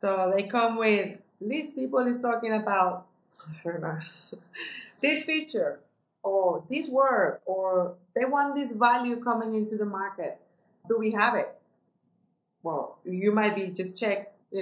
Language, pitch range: English, 180-225 Hz